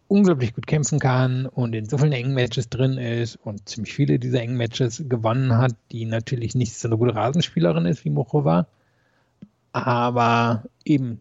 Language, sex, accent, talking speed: German, male, German, 170 wpm